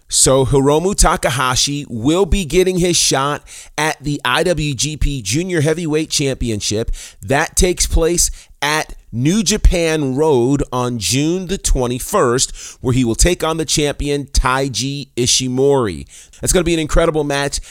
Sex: male